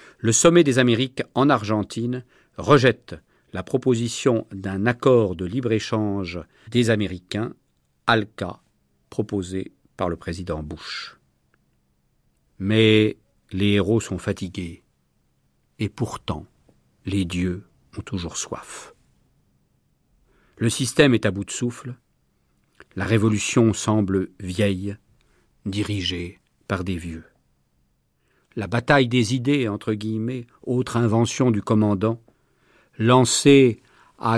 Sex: male